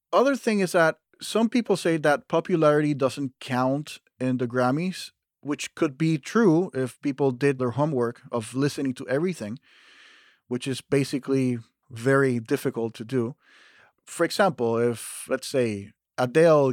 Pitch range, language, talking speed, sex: 130-150 Hz, English, 145 wpm, male